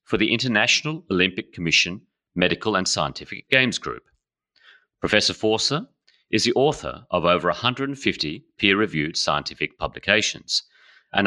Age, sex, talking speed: 40-59, male, 115 wpm